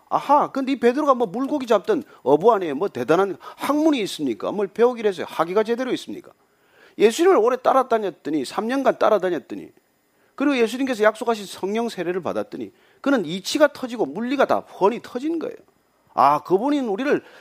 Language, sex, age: Korean, male, 40-59